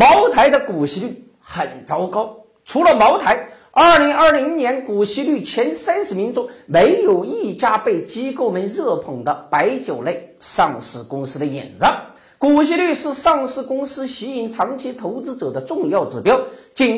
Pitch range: 235-330 Hz